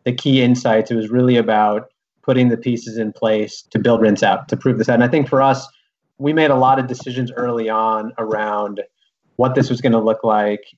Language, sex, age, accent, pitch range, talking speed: English, male, 30-49, American, 110-135 Hz, 230 wpm